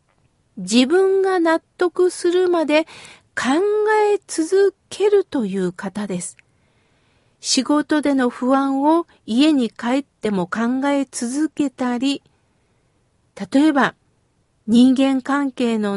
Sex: female